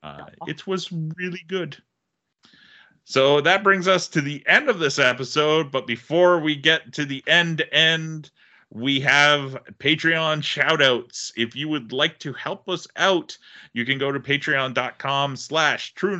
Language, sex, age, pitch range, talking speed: English, male, 30-49, 125-165 Hz, 160 wpm